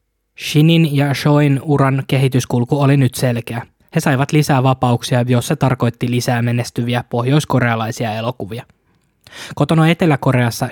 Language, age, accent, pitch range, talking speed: Finnish, 20-39, native, 120-135 Hz, 120 wpm